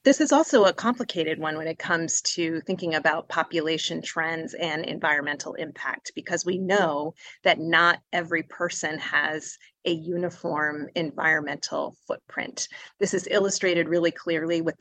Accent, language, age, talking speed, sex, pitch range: American, English, 30-49, 140 wpm, female, 160-190 Hz